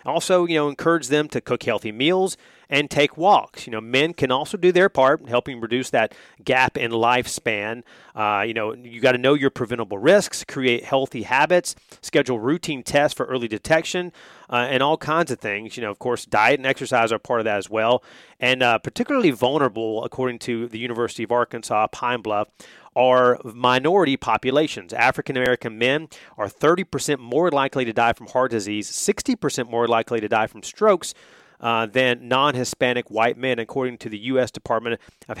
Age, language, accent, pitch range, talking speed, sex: 30-49, English, American, 115-140 Hz, 185 wpm, male